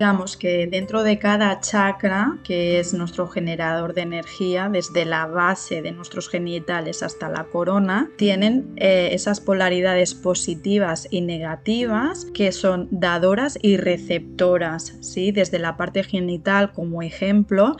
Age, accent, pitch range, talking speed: 20-39, Spanish, 180-210 Hz, 130 wpm